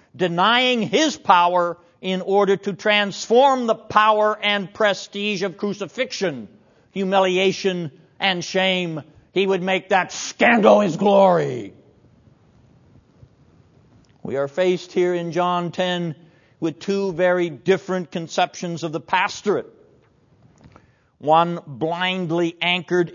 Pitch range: 150-190 Hz